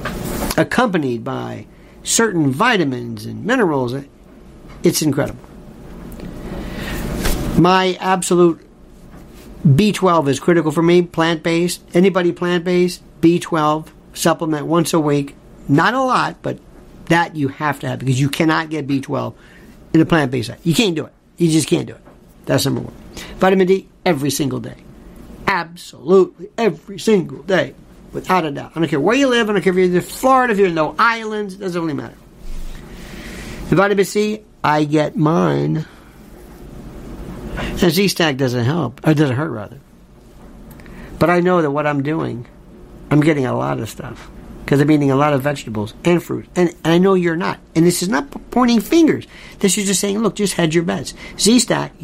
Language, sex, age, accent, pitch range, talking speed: English, male, 50-69, American, 145-190 Hz, 165 wpm